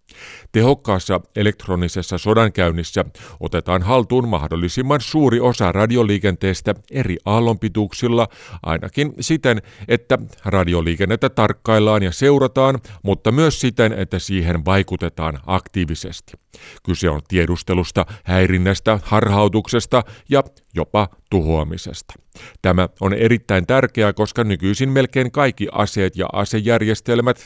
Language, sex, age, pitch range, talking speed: Finnish, male, 50-69, 90-120 Hz, 95 wpm